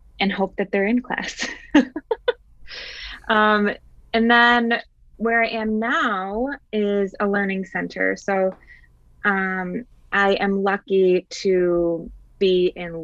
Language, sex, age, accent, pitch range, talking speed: English, female, 20-39, American, 165-200 Hz, 115 wpm